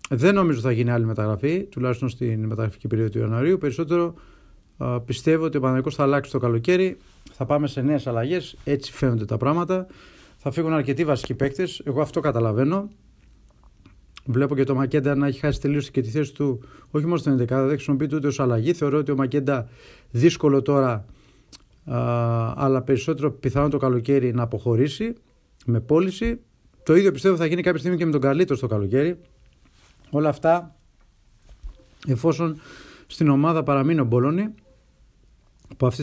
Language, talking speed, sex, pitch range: Greek, 165 wpm, male, 120-155 Hz